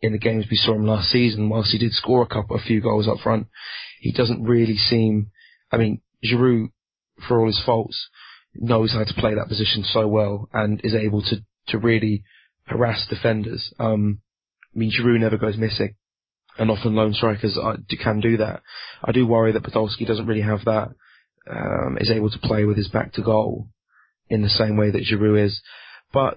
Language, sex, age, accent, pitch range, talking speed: English, male, 20-39, British, 105-115 Hz, 200 wpm